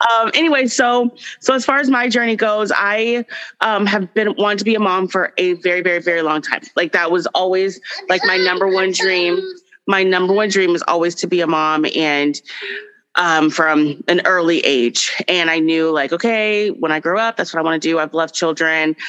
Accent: American